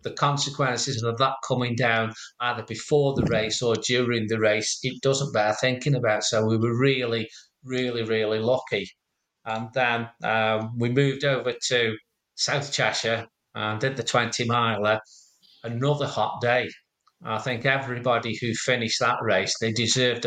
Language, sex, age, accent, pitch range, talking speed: English, male, 40-59, British, 110-130 Hz, 155 wpm